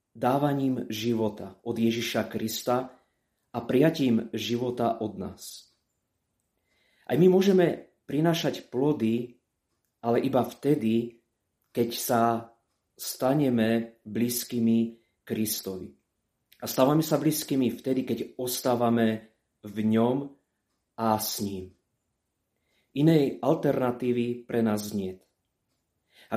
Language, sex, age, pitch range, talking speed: Slovak, male, 30-49, 110-130 Hz, 95 wpm